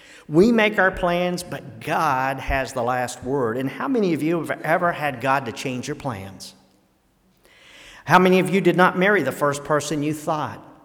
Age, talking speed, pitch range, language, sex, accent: 50-69, 195 wpm, 130-175 Hz, English, male, American